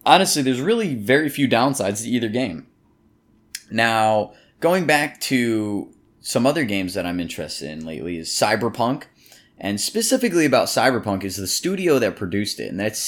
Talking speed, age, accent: 160 wpm, 20-39, American